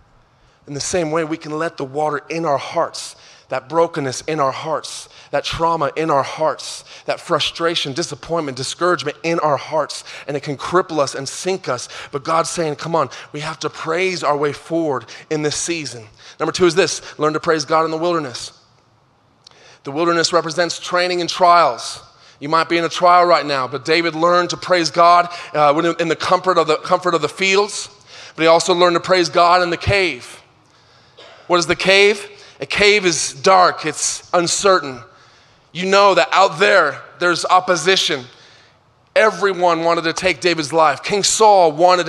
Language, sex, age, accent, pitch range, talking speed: English, male, 30-49, American, 155-200 Hz, 185 wpm